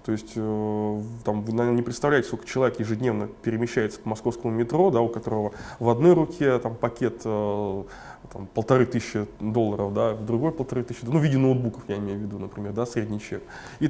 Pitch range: 110-125 Hz